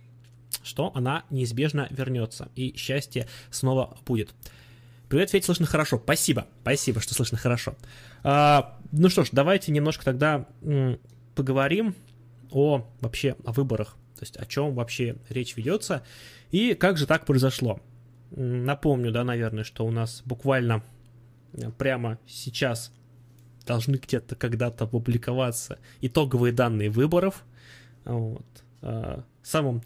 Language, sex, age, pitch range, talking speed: Russian, male, 20-39, 120-140 Hz, 120 wpm